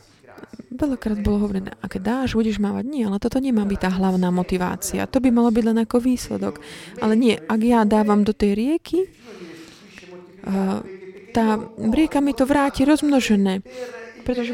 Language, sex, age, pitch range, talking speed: Slovak, female, 30-49, 190-235 Hz, 155 wpm